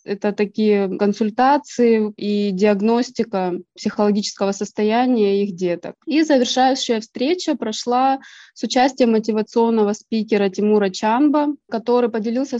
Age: 20-39